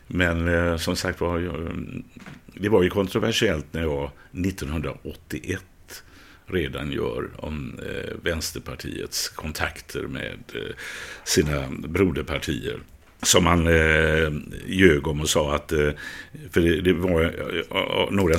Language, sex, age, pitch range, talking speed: Swedish, male, 60-79, 80-105 Hz, 95 wpm